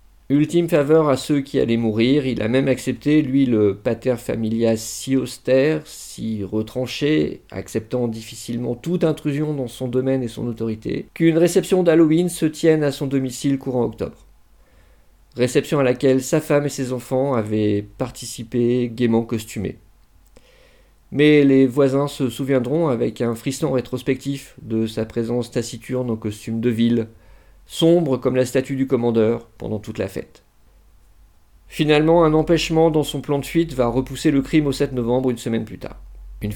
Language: French